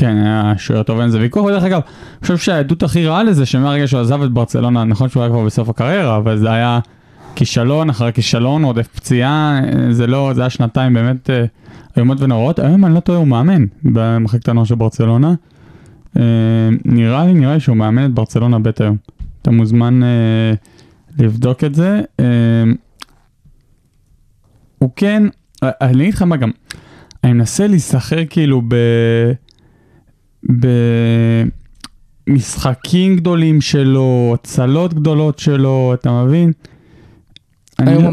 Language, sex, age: Hebrew, male, 20-39